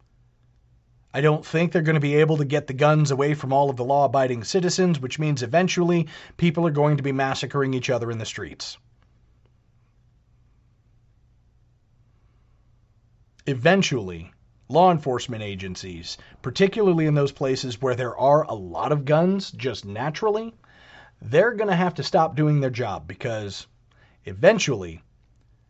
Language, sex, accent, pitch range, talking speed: English, male, American, 115-145 Hz, 140 wpm